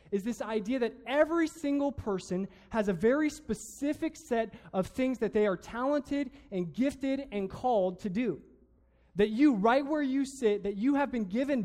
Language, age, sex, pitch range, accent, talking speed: English, 20-39, male, 200-260 Hz, American, 180 wpm